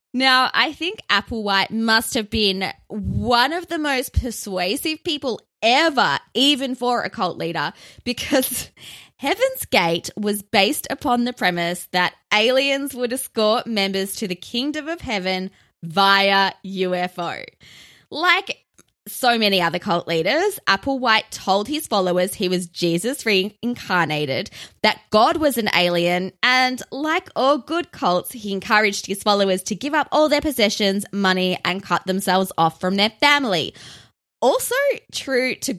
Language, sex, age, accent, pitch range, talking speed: English, female, 20-39, Australian, 185-255 Hz, 140 wpm